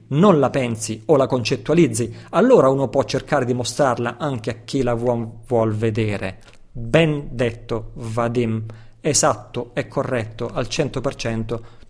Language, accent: Italian, native